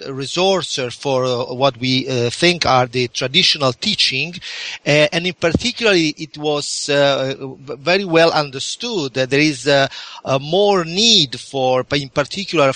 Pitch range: 130-165 Hz